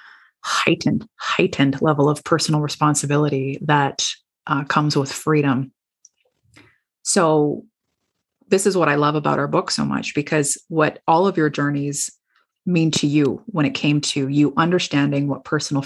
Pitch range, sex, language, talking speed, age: 140-165 Hz, female, English, 150 wpm, 30-49